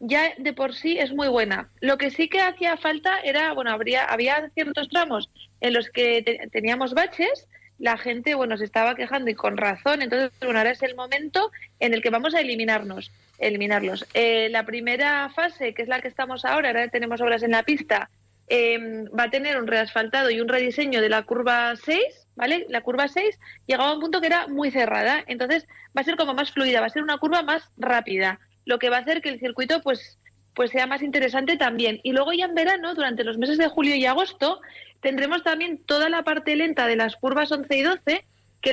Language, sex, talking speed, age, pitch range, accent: Spanish, female, 215 wpm, 30-49, 240-310 Hz, Spanish